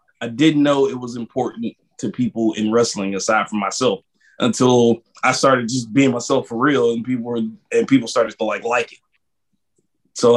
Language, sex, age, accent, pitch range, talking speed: English, male, 20-39, American, 115-145 Hz, 185 wpm